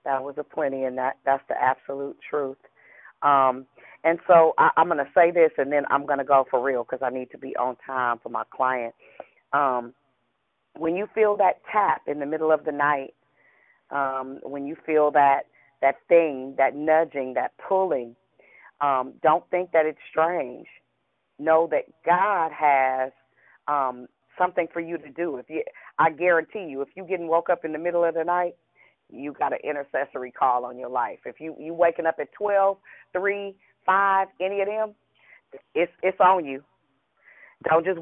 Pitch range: 140-185 Hz